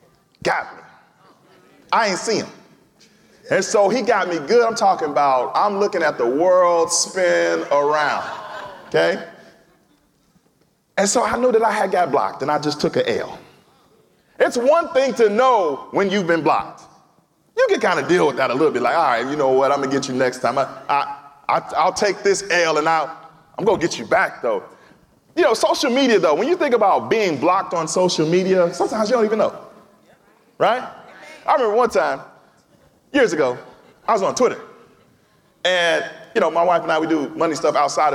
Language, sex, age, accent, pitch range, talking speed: English, male, 30-49, American, 170-285 Hz, 200 wpm